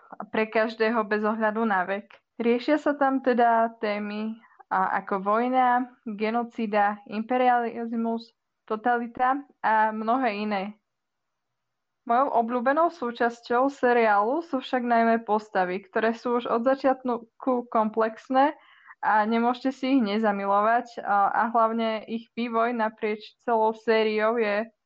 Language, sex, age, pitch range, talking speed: Slovak, female, 20-39, 215-245 Hz, 115 wpm